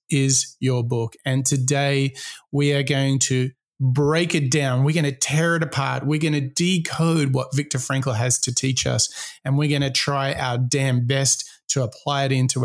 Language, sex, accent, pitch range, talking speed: English, male, Australian, 130-160 Hz, 195 wpm